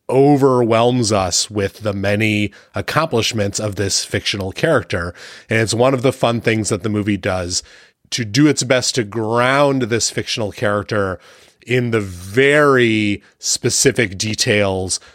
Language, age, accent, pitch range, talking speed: English, 30-49, American, 100-125 Hz, 140 wpm